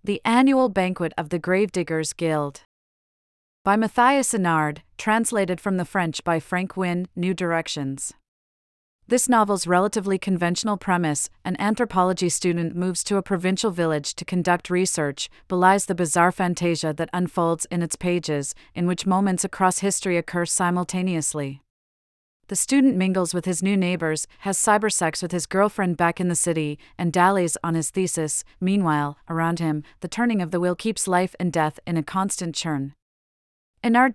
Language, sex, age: English, female, 40-59